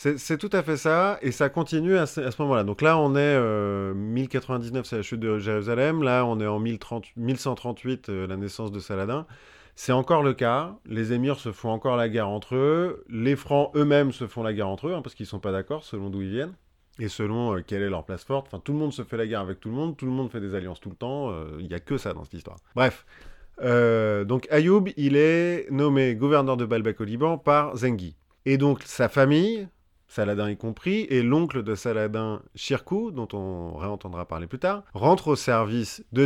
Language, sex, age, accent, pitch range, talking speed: French, male, 30-49, French, 100-140 Hz, 235 wpm